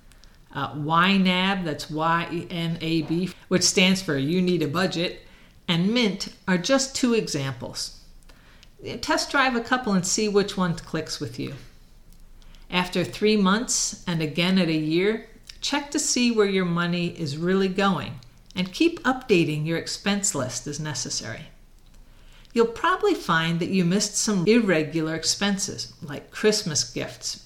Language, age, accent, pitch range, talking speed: English, 50-69, American, 160-215 Hz, 140 wpm